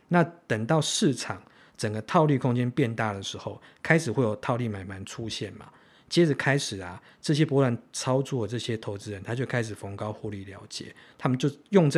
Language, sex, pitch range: Chinese, male, 105-140 Hz